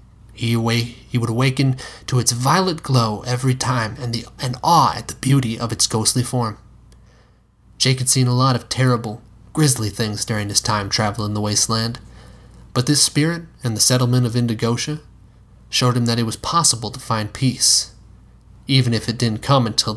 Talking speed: 175 wpm